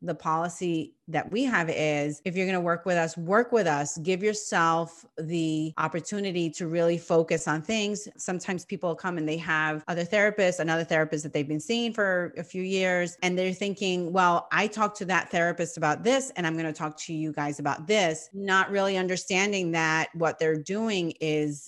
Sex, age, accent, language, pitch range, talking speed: female, 30-49, American, English, 160-200 Hz, 200 wpm